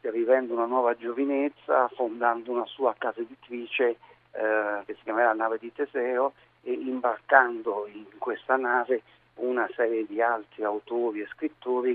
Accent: native